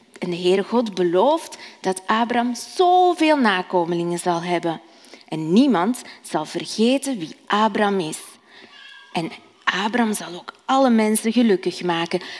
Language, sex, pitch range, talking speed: Dutch, female, 175-240 Hz, 125 wpm